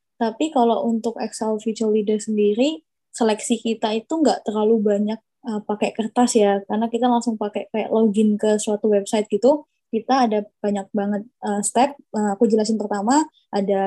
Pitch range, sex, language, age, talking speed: 210-240 Hz, female, Indonesian, 20-39, 160 wpm